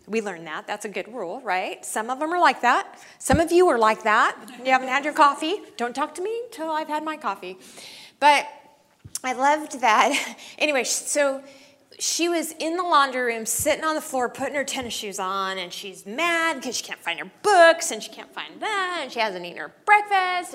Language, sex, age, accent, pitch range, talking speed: English, female, 30-49, American, 195-295 Hz, 220 wpm